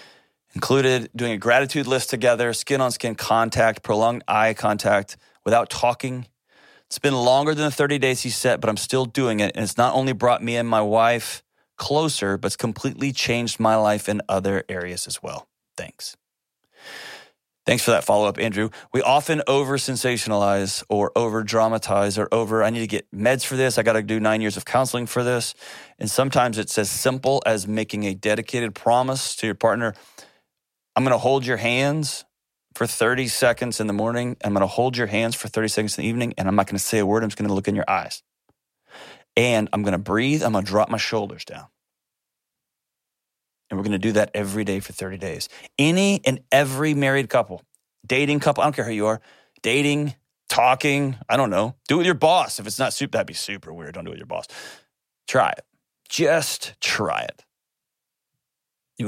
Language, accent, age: English, American, 30-49